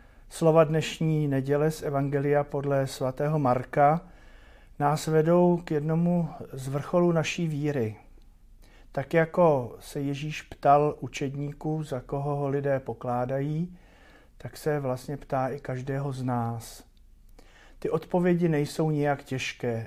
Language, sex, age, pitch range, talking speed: Slovak, male, 50-69, 125-155 Hz, 120 wpm